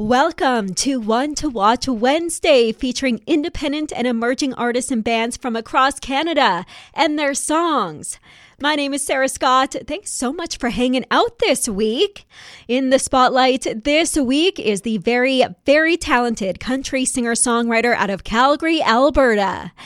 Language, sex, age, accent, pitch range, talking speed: English, female, 20-39, American, 230-295 Hz, 150 wpm